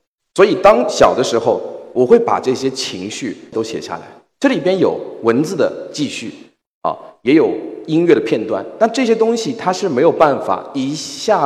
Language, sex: Chinese, male